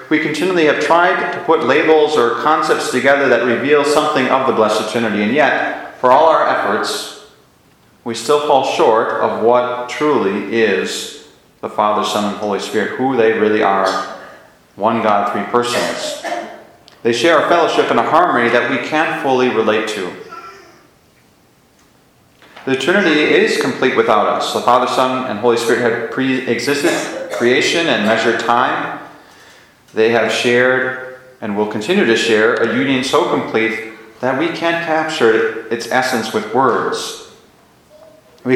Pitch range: 110-150 Hz